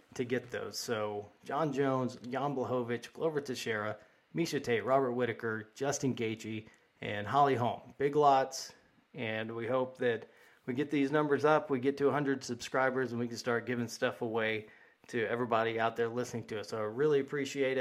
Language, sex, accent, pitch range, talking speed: English, male, American, 115-135 Hz, 180 wpm